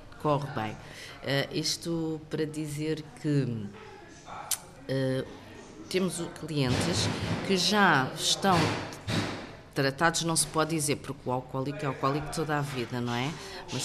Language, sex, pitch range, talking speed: English, female, 135-170 Hz, 130 wpm